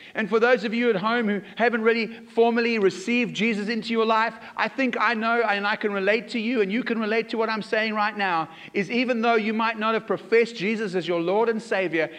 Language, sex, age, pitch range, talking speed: English, male, 40-59, 165-225 Hz, 245 wpm